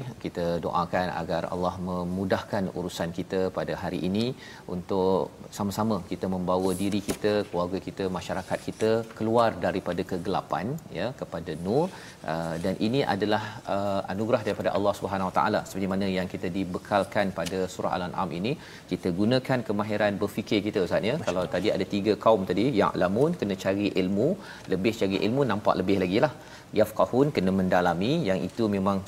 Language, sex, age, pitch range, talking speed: Malayalam, male, 40-59, 95-110 Hz, 155 wpm